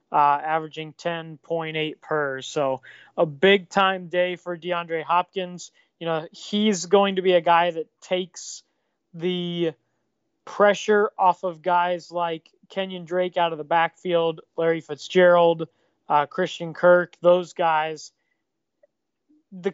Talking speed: 130 wpm